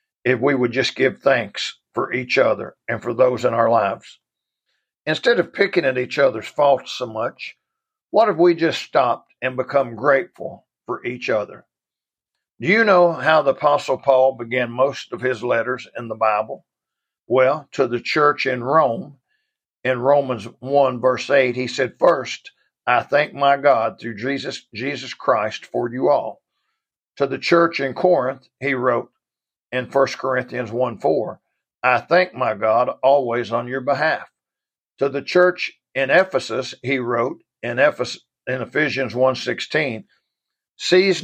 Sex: male